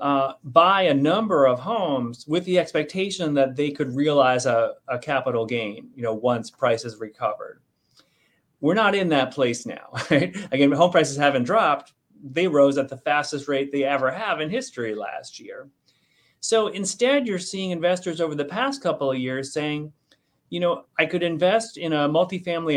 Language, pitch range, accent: English, 135-180 Hz, American